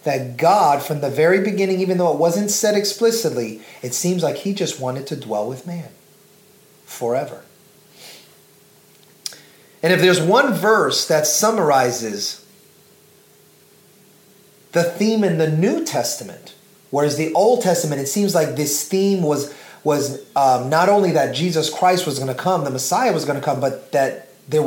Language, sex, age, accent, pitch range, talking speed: English, male, 30-49, American, 140-200 Hz, 160 wpm